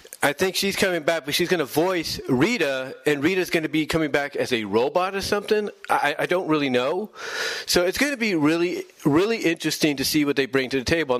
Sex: male